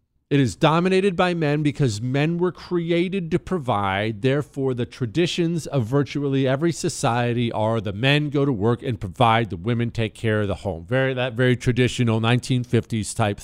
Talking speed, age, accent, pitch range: 175 wpm, 40-59, American, 115-185 Hz